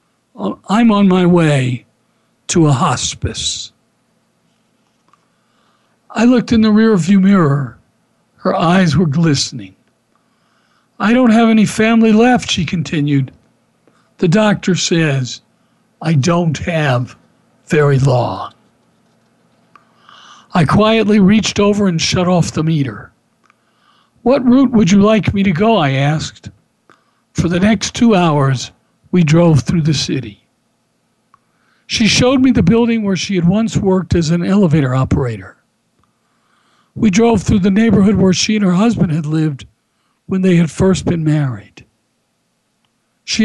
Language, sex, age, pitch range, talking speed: English, male, 60-79, 150-215 Hz, 130 wpm